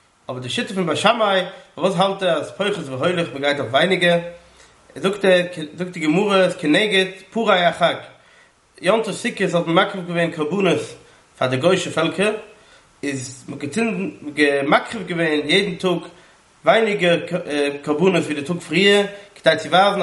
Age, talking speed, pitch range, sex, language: 20-39, 140 wpm, 155-190 Hz, male, English